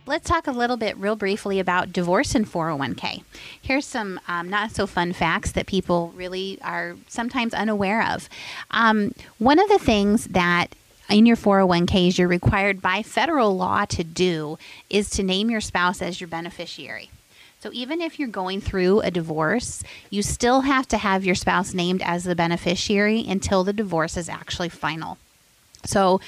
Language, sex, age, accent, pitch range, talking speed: English, female, 30-49, American, 180-225 Hz, 170 wpm